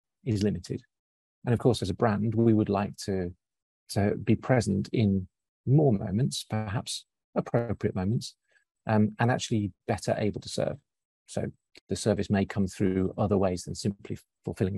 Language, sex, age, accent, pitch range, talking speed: English, male, 40-59, British, 95-120 Hz, 160 wpm